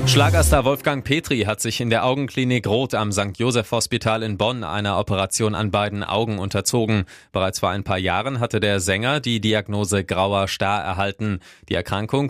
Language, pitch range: German, 95-115 Hz